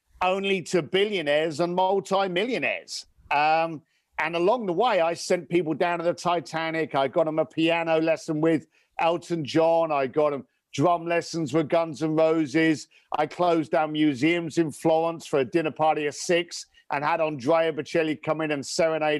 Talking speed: 175 wpm